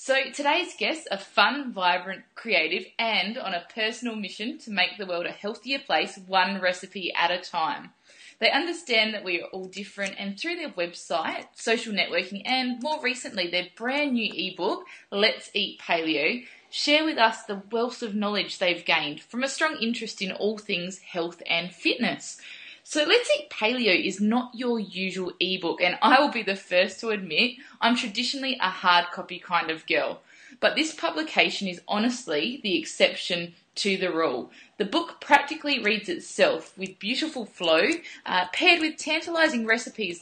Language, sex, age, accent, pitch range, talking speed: English, female, 20-39, Australian, 185-260 Hz, 170 wpm